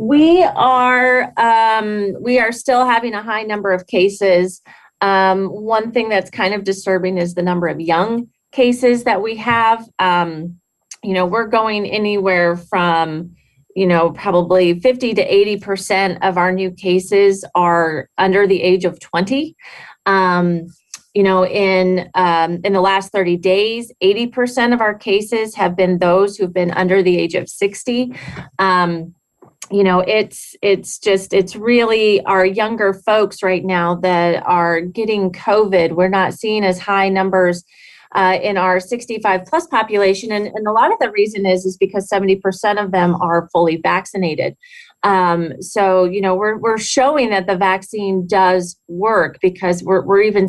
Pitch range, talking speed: 180-210 Hz, 165 wpm